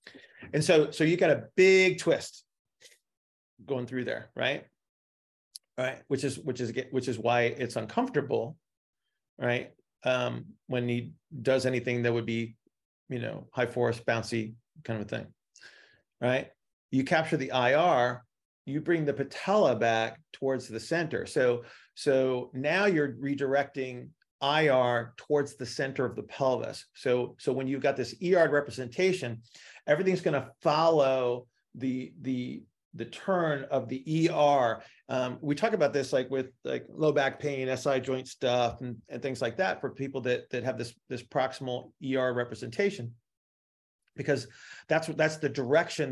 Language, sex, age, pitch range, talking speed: English, male, 40-59, 120-145 Hz, 155 wpm